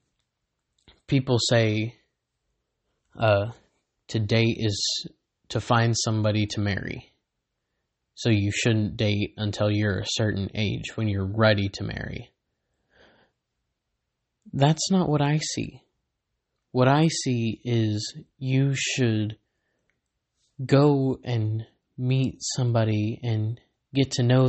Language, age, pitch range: English, 20-39, 110-140 Hz